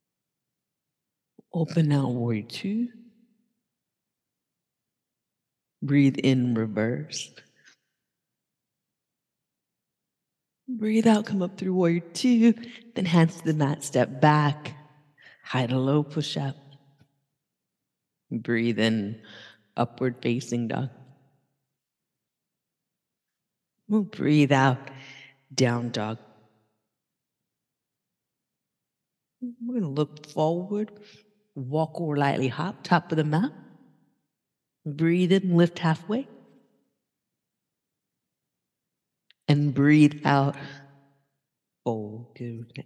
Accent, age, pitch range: American, 50-69, 130-175 Hz